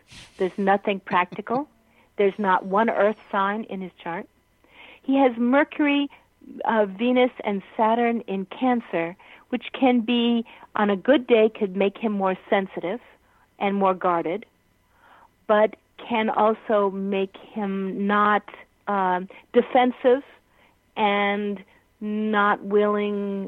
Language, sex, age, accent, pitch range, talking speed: English, female, 50-69, American, 185-225 Hz, 120 wpm